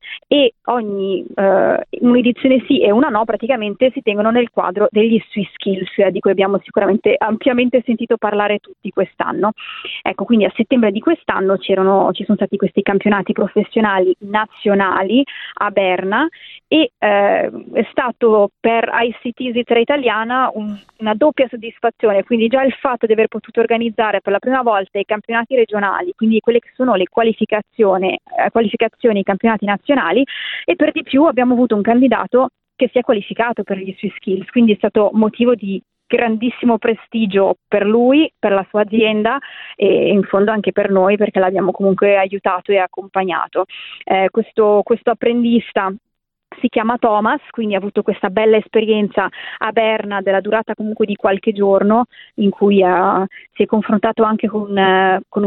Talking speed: 160 wpm